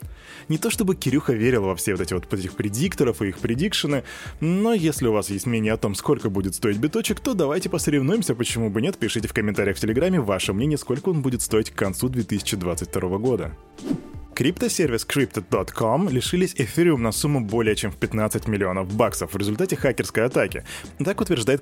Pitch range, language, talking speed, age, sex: 105-150 Hz, Russian, 185 wpm, 20-39, male